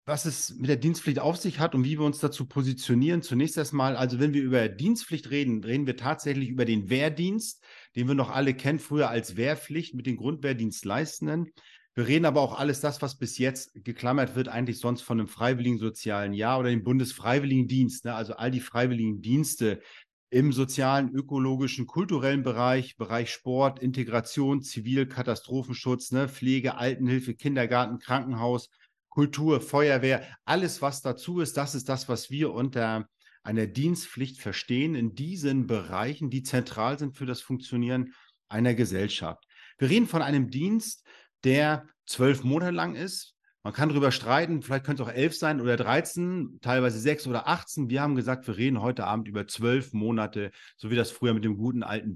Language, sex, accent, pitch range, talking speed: German, male, German, 120-145 Hz, 175 wpm